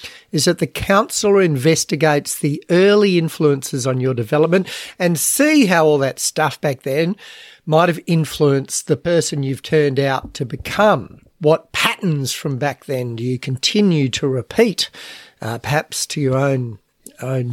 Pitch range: 140-175 Hz